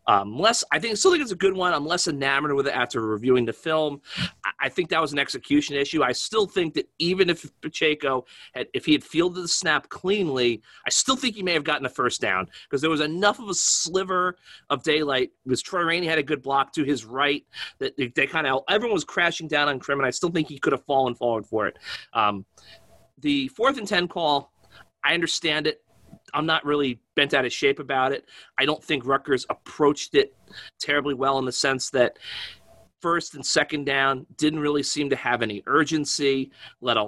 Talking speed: 220 wpm